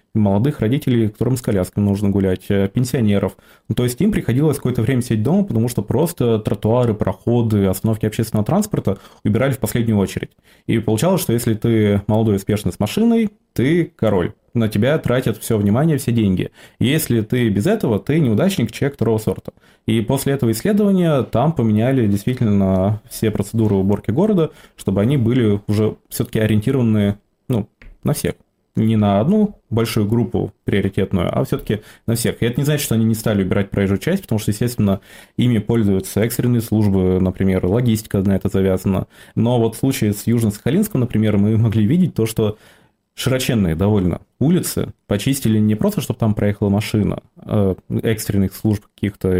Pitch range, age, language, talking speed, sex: 100-120 Hz, 20-39, Russian, 165 wpm, male